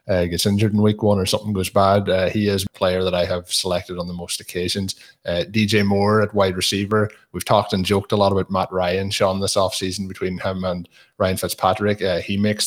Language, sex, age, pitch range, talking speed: English, male, 20-39, 90-100 Hz, 235 wpm